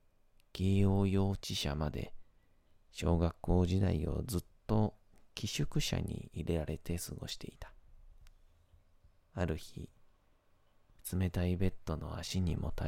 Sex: male